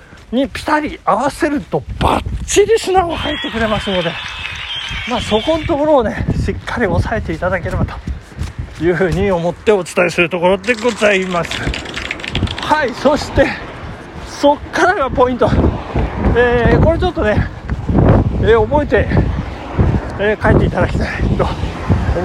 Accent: native